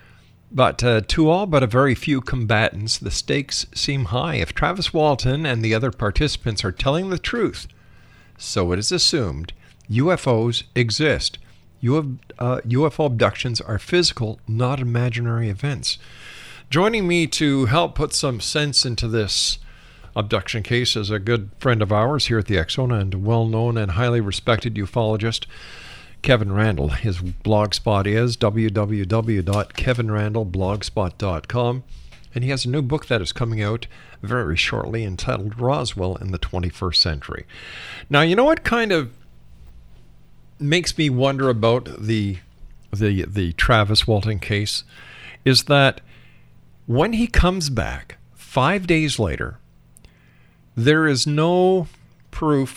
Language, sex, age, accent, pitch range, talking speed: English, male, 50-69, American, 105-135 Hz, 135 wpm